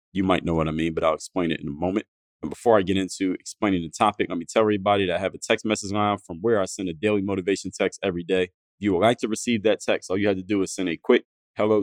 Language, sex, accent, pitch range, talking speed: English, male, American, 95-110 Hz, 305 wpm